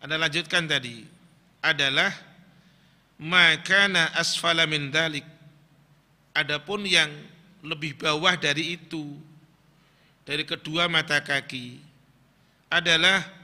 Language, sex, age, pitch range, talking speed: Indonesian, male, 40-59, 140-165 Hz, 75 wpm